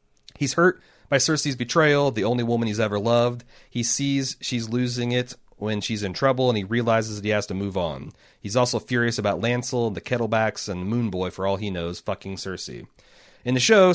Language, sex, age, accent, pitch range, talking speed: English, male, 30-49, American, 105-135 Hz, 210 wpm